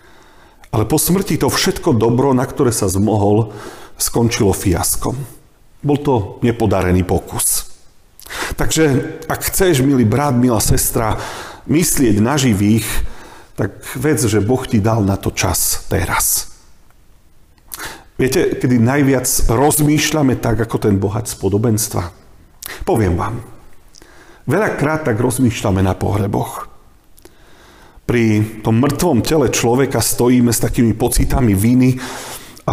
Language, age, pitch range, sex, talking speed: Slovak, 40-59, 110-135 Hz, male, 115 wpm